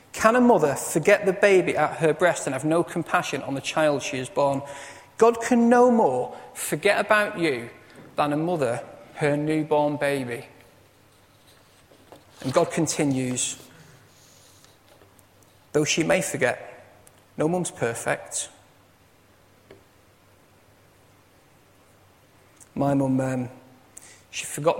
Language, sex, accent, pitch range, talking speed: English, male, British, 120-160 Hz, 115 wpm